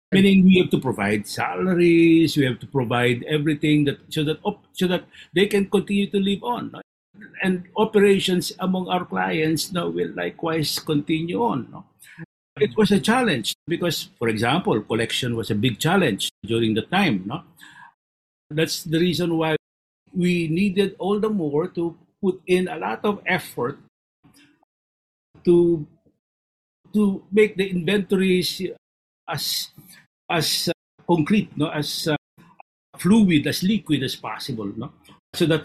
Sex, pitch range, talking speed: male, 135-185 Hz, 150 wpm